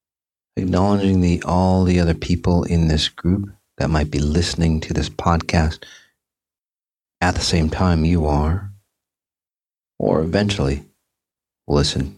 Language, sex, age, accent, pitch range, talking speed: English, male, 40-59, American, 75-95 Hz, 125 wpm